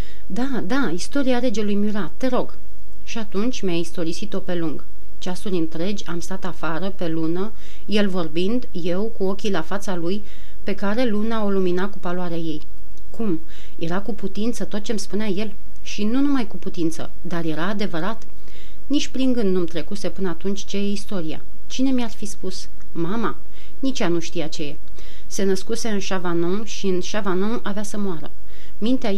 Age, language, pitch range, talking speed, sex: 30-49, Romanian, 175-215 Hz, 175 wpm, female